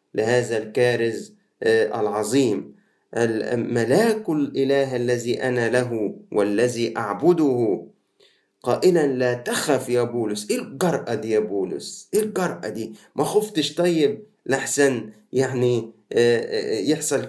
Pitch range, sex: 110-140 Hz, male